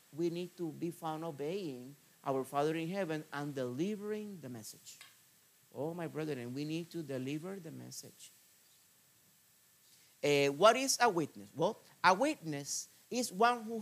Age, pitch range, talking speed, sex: 50-69, 125-175 Hz, 150 wpm, male